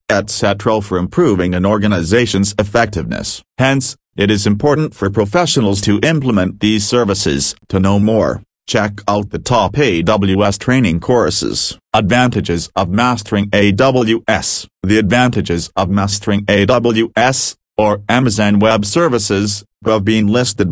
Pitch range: 100-120 Hz